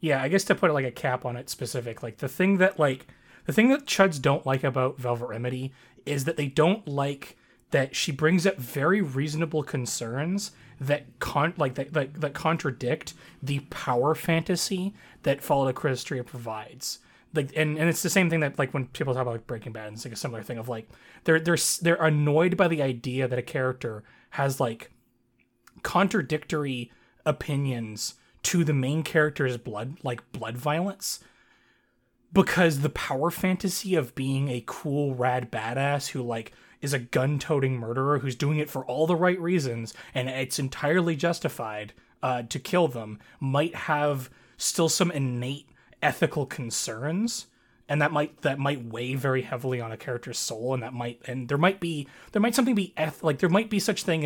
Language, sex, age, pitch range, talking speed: English, male, 30-49, 125-160 Hz, 185 wpm